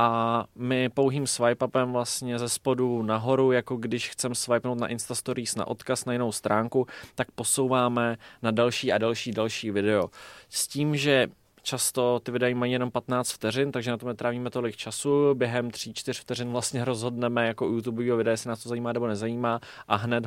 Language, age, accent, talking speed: Czech, 20-39, native, 185 wpm